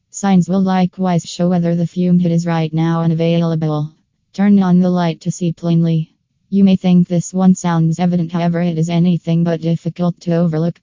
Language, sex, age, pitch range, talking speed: English, female, 20-39, 165-180 Hz, 190 wpm